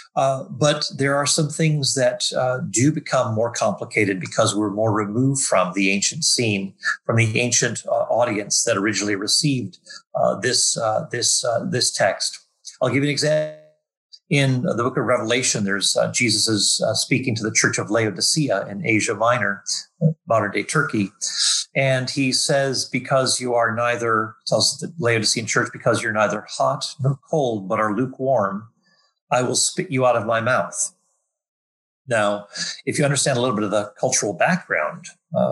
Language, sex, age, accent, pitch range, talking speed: English, male, 40-59, American, 110-150 Hz, 170 wpm